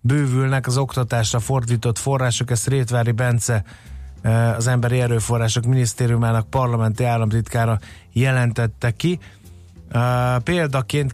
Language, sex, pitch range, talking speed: Hungarian, male, 115-140 Hz, 90 wpm